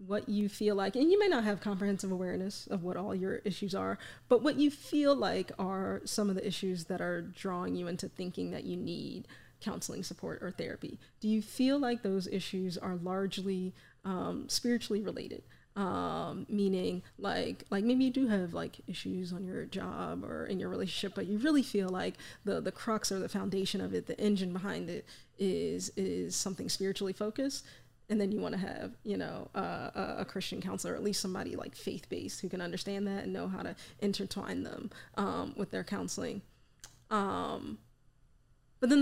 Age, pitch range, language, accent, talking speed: 20-39, 190-230 Hz, English, American, 190 wpm